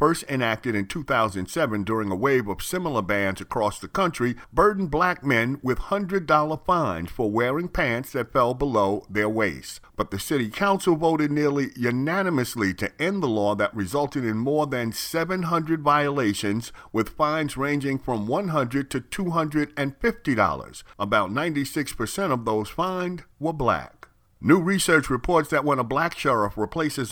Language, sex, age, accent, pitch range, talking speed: English, male, 50-69, American, 110-160 Hz, 150 wpm